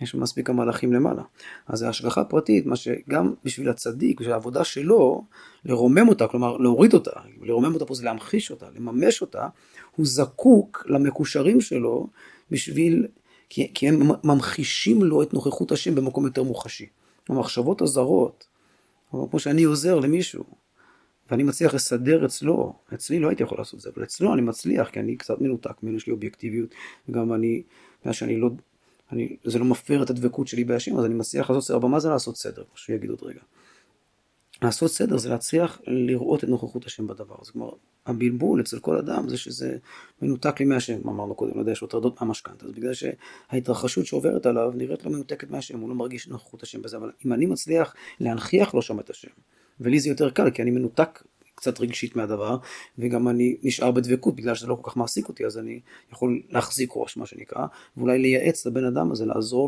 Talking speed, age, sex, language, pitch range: 185 wpm, 40-59, male, Hebrew, 115-135 Hz